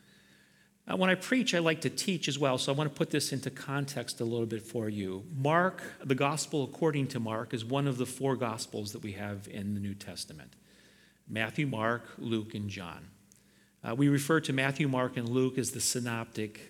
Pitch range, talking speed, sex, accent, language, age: 115-150 Hz, 205 wpm, male, American, English, 40-59